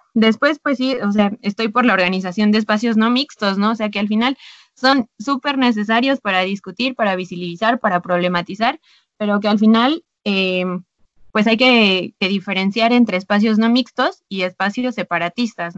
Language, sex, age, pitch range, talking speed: Spanish, female, 20-39, 185-235 Hz, 170 wpm